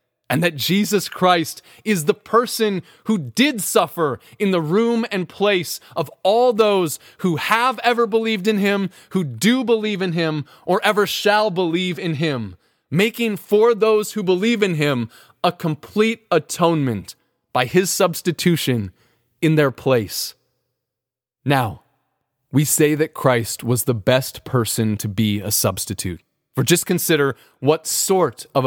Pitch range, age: 125-175 Hz, 20-39